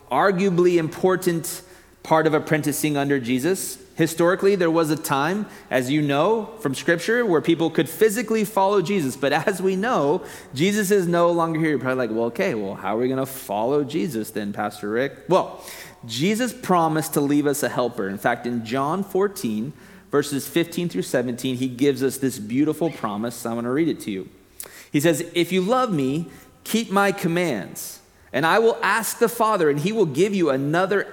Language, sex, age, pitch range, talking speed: English, male, 30-49, 135-190 Hz, 190 wpm